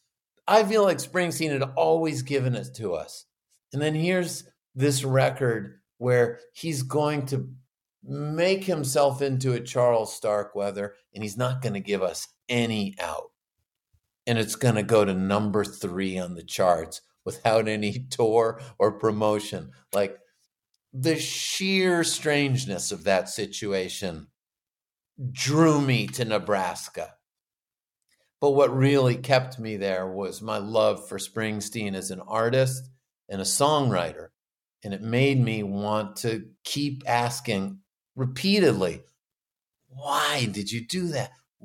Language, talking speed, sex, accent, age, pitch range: English, 135 wpm, male, American, 50-69, 105-145 Hz